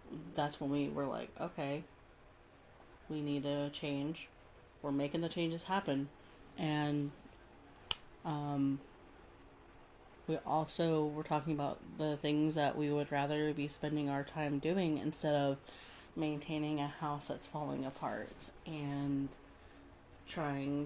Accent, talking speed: American, 125 wpm